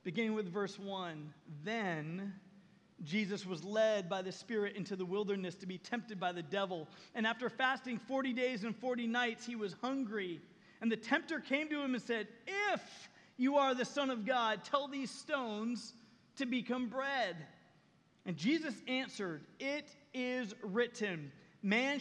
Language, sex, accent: English, male, American